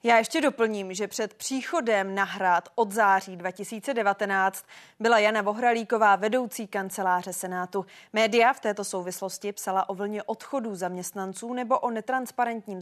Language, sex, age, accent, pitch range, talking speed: Czech, female, 20-39, native, 190-230 Hz, 130 wpm